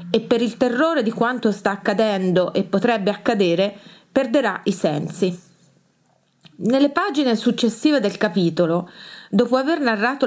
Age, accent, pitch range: 30-49, native, 190-235 Hz